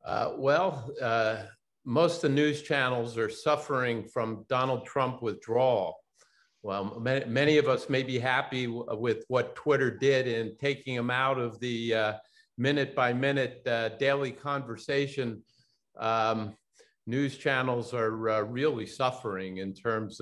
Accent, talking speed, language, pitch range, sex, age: American, 140 wpm, English, 105-125 Hz, male, 50-69